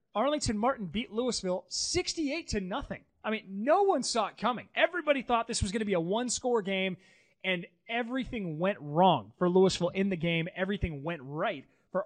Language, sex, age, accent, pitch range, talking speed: English, male, 30-49, American, 170-220 Hz, 185 wpm